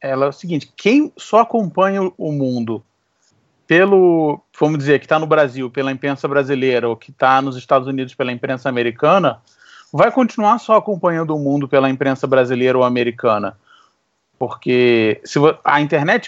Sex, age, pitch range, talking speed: male, 30-49, 135-185 Hz, 160 wpm